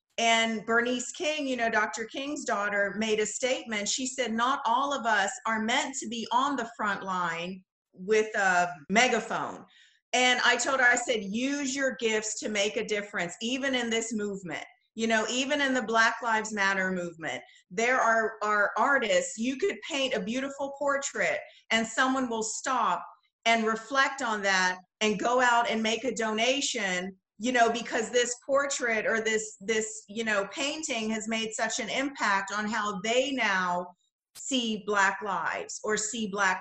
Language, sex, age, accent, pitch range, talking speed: English, female, 40-59, American, 210-255 Hz, 170 wpm